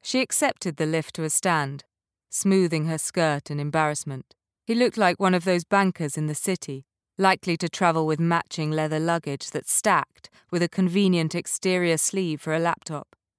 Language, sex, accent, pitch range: English, female, British, 150-195 Hz